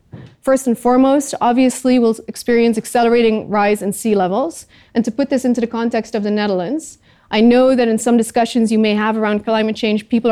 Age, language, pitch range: 30-49, English, 210-240 Hz